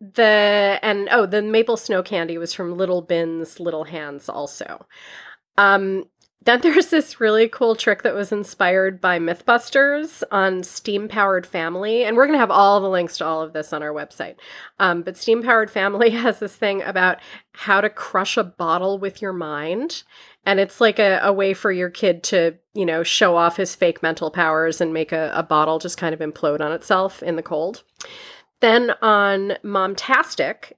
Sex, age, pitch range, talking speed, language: female, 30-49, 170-215 Hz, 185 wpm, English